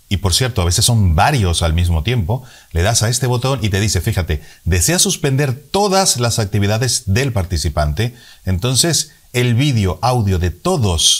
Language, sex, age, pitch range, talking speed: Spanish, male, 40-59, 95-125 Hz, 170 wpm